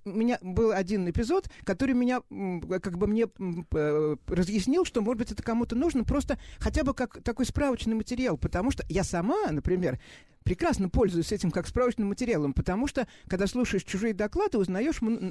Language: Russian